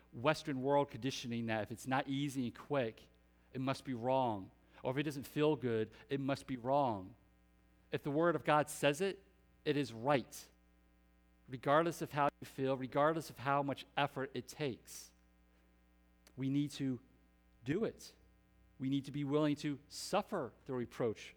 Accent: American